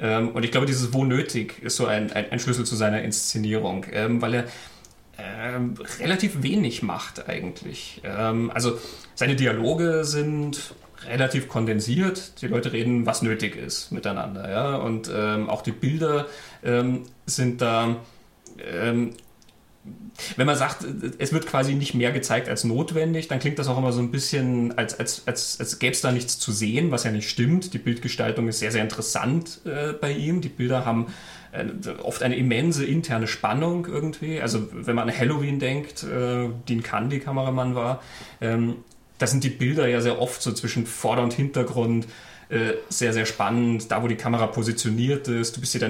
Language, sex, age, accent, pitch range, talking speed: German, male, 30-49, German, 115-135 Hz, 175 wpm